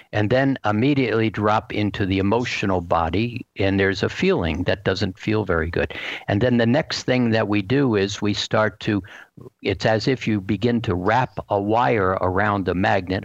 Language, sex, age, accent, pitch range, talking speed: English, male, 60-79, American, 100-125 Hz, 185 wpm